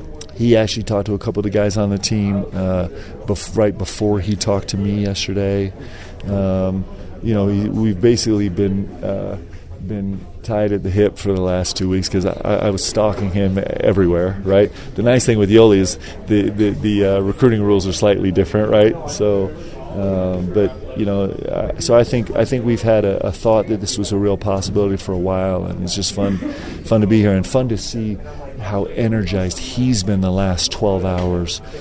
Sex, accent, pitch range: male, American, 95-105 Hz